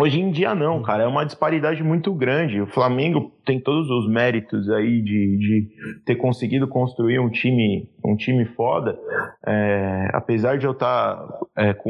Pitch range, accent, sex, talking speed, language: 115-155 Hz, Brazilian, male, 170 wpm, Portuguese